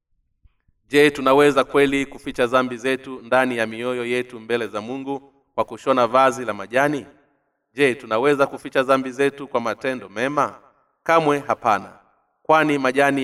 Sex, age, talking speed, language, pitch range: male, 30-49, 135 wpm, Swahili, 115-135 Hz